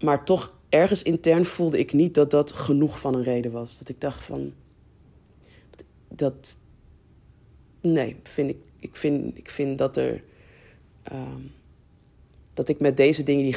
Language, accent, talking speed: Dutch, Dutch, 155 wpm